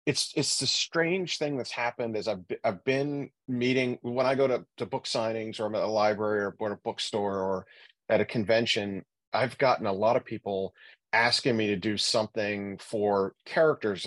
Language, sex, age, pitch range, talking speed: English, male, 40-59, 100-120 Hz, 195 wpm